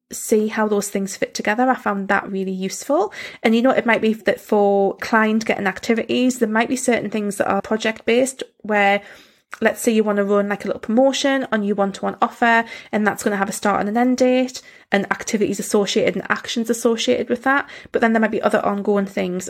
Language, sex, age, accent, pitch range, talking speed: English, female, 20-39, British, 195-240 Hz, 220 wpm